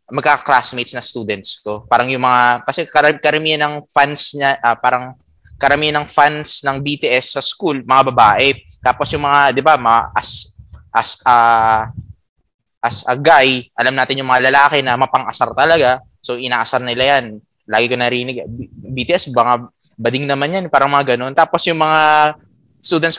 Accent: native